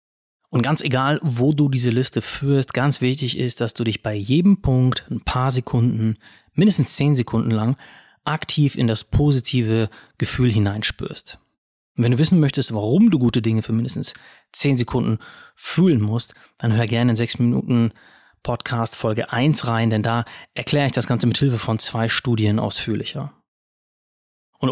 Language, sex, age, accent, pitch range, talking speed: German, male, 30-49, German, 120-145 Hz, 165 wpm